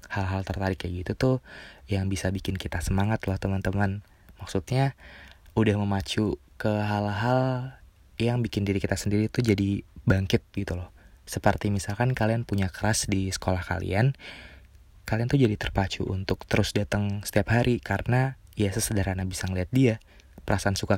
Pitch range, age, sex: 90-105 Hz, 20-39, male